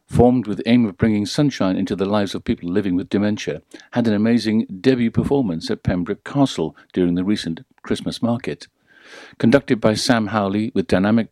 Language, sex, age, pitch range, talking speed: English, male, 60-79, 95-120 Hz, 180 wpm